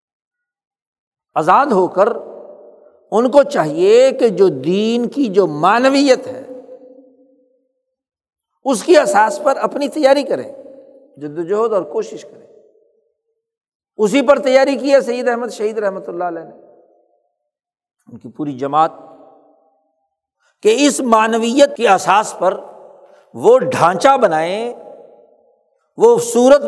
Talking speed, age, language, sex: 110 wpm, 60-79, Urdu, male